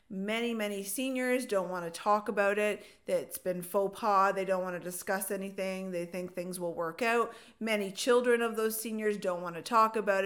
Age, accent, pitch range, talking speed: 40-59, American, 185-225 Hz, 205 wpm